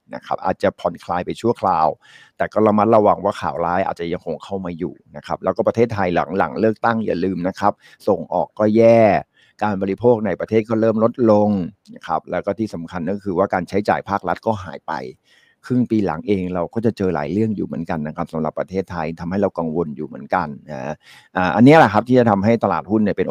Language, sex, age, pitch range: Thai, male, 60-79, 95-120 Hz